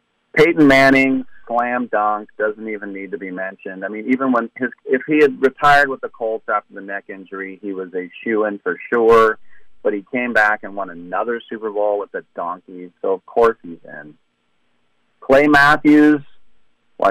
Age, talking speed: 40-59, 185 wpm